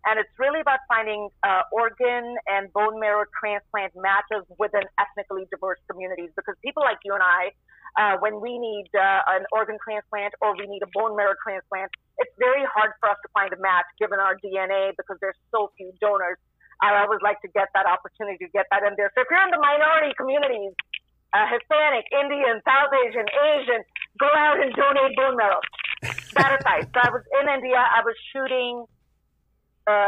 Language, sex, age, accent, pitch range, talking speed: English, female, 40-59, American, 195-235 Hz, 195 wpm